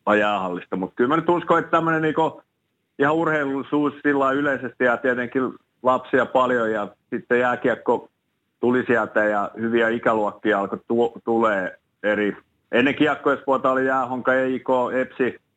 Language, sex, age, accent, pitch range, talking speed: Finnish, male, 30-49, native, 95-125 Hz, 125 wpm